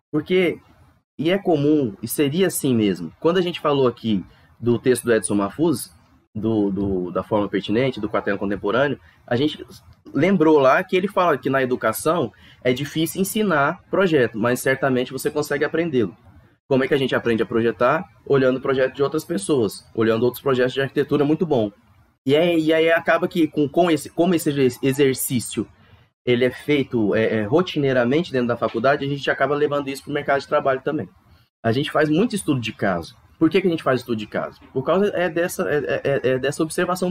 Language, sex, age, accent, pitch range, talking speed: Portuguese, male, 20-39, Brazilian, 115-160 Hz, 195 wpm